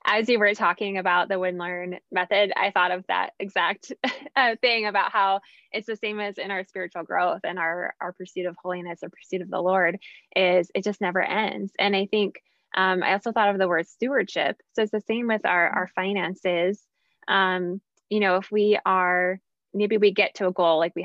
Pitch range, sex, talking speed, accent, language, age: 180-210 Hz, female, 210 wpm, American, English, 10-29